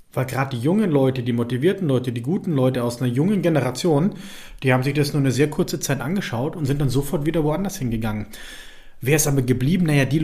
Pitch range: 130-155 Hz